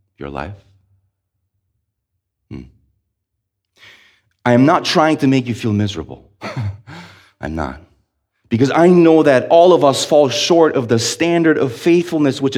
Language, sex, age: English, male, 30-49